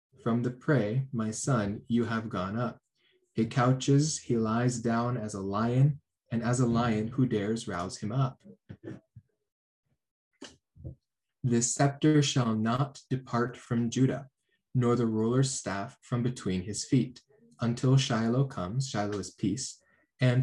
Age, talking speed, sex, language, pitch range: 20-39, 140 wpm, male, English, 110-130 Hz